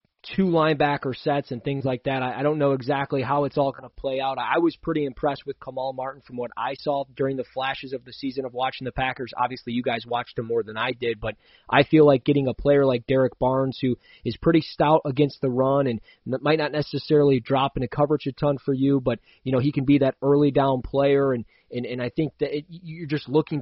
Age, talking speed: 20-39, 245 wpm